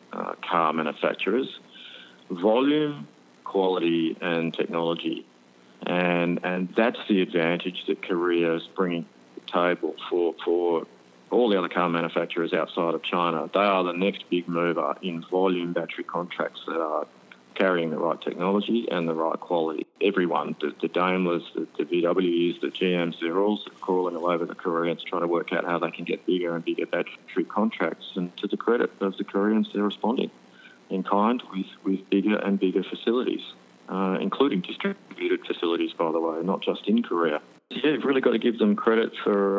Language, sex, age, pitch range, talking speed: English, male, 30-49, 85-100 Hz, 175 wpm